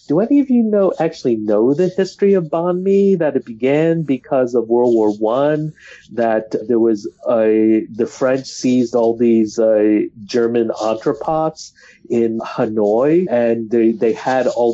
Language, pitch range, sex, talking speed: English, 115-145 Hz, male, 155 wpm